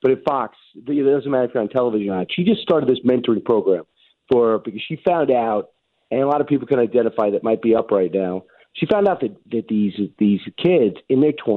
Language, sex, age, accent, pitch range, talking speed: English, male, 40-59, American, 110-135 Hz, 240 wpm